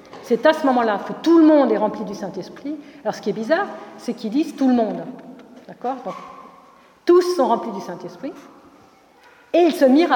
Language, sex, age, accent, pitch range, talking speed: French, female, 50-69, French, 215-285 Hz, 200 wpm